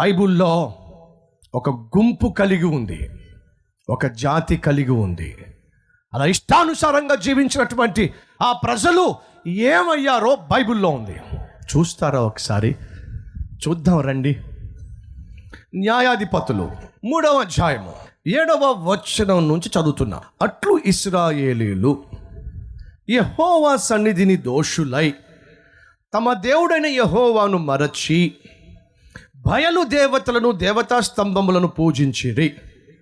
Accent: native